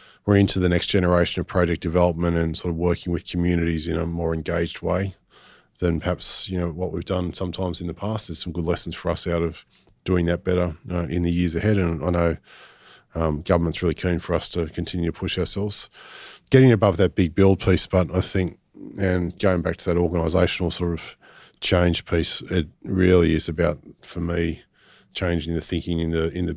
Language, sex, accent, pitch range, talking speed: English, male, Australian, 85-90 Hz, 205 wpm